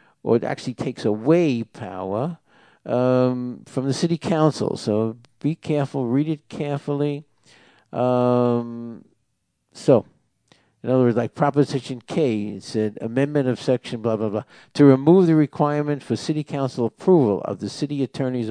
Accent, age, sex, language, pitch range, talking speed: American, 60-79, male, English, 110-140 Hz, 145 wpm